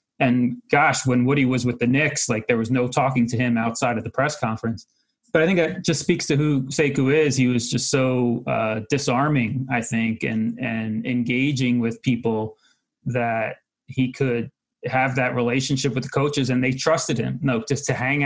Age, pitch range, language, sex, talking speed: 30-49, 115-135 Hz, English, male, 205 wpm